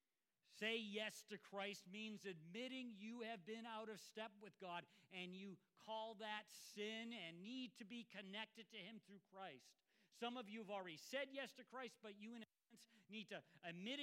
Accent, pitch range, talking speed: American, 180-225 Hz, 185 wpm